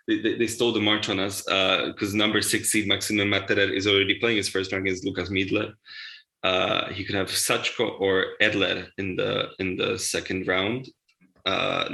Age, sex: 20-39, male